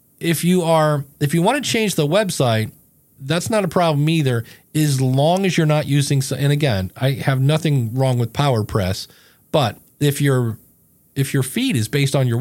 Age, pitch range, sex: 40-59, 115-150 Hz, male